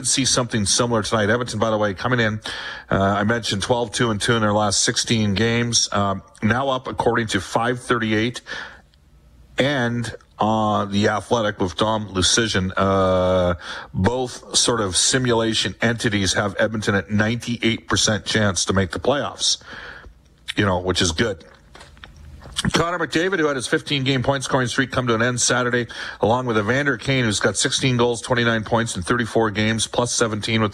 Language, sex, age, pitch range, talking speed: English, male, 40-59, 100-120 Hz, 165 wpm